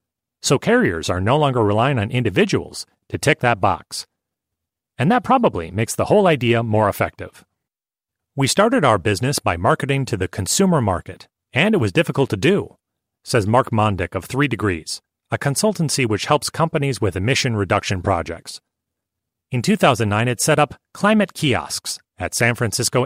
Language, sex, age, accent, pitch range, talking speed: English, male, 30-49, American, 105-145 Hz, 160 wpm